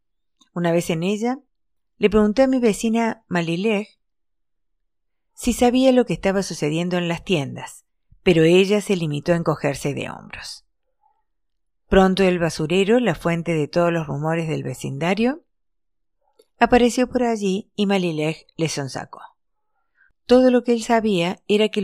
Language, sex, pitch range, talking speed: Spanish, female, 160-225 Hz, 145 wpm